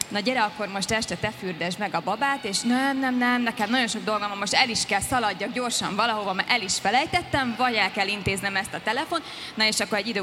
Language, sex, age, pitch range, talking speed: Hungarian, female, 20-39, 185-235 Hz, 245 wpm